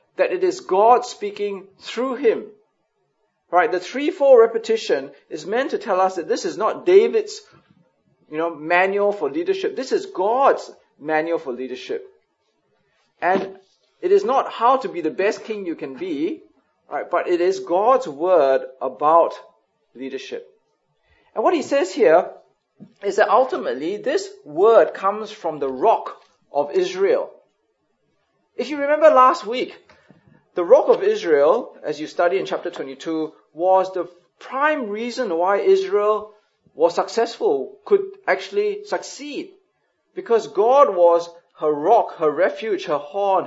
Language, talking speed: English, 145 wpm